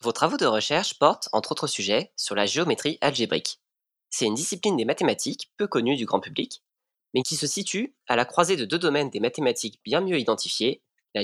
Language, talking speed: French, 205 wpm